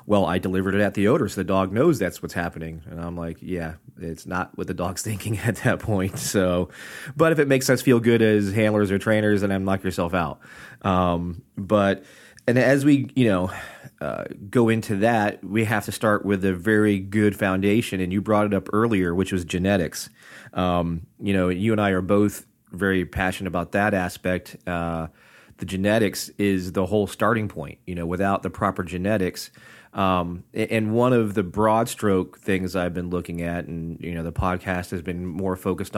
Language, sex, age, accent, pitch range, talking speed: English, male, 30-49, American, 90-105 Hz, 200 wpm